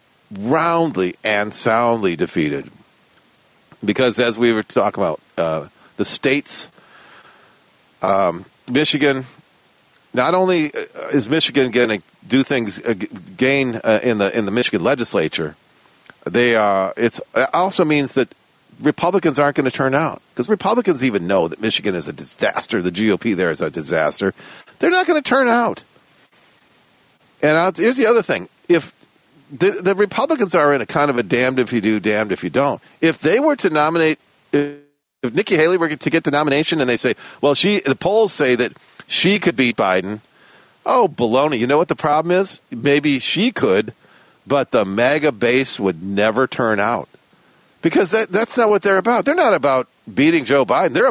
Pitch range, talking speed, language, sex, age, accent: 120-185 Hz, 175 wpm, English, male, 40-59, American